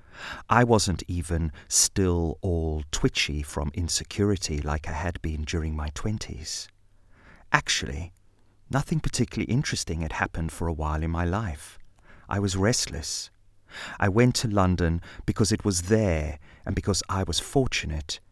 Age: 30-49